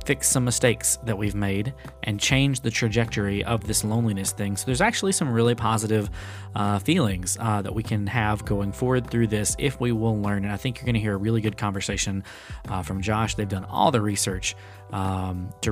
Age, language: 20-39, English